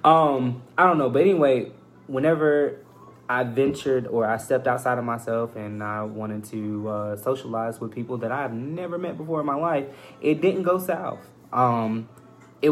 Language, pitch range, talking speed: English, 110-135 Hz, 175 wpm